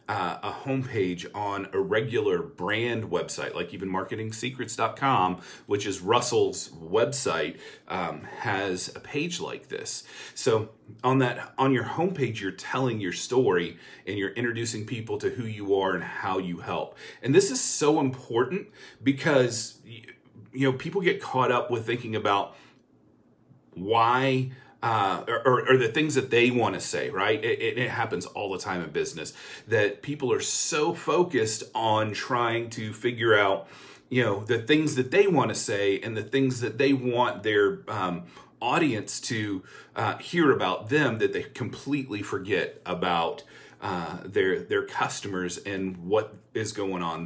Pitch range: 105-140 Hz